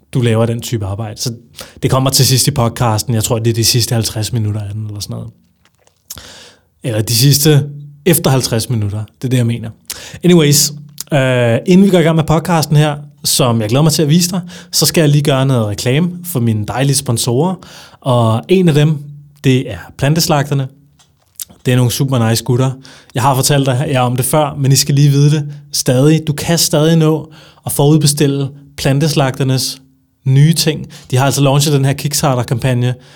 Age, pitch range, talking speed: 20-39, 120-150 Hz, 195 wpm